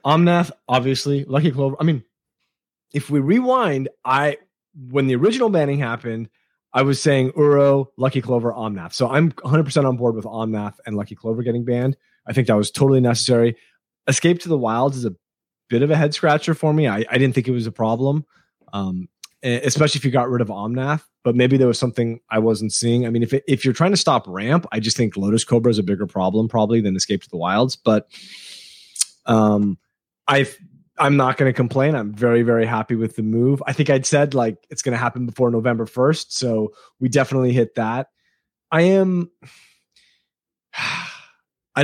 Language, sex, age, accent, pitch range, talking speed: English, male, 30-49, American, 110-140 Hz, 195 wpm